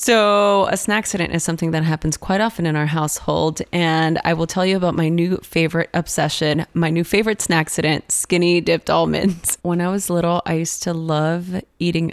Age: 20-39